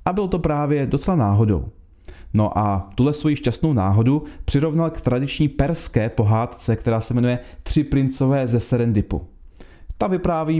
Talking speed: 145 wpm